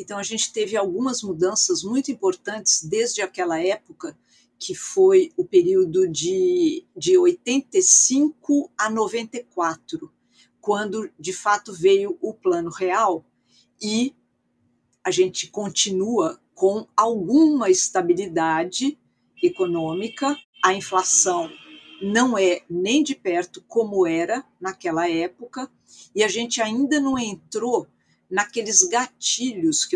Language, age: Portuguese, 50-69